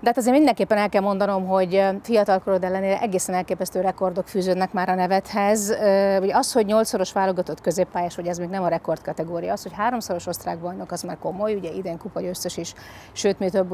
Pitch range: 180-205 Hz